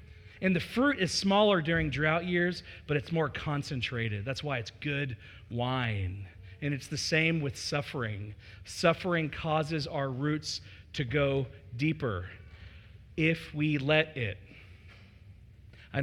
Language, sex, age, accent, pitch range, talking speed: English, male, 40-59, American, 100-150 Hz, 130 wpm